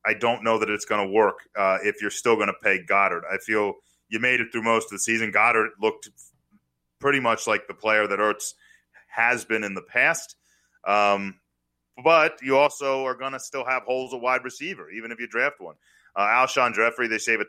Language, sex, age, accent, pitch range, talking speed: English, male, 30-49, American, 100-120 Hz, 220 wpm